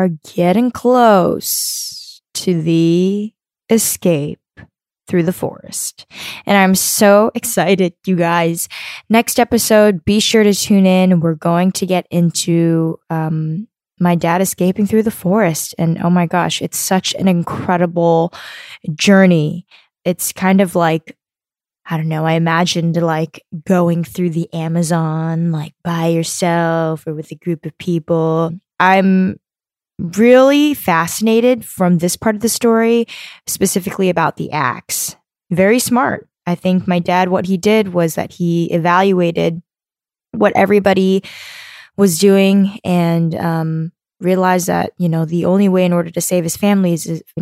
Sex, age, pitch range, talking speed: female, 10-29, 165-195 Hz, 140 wpm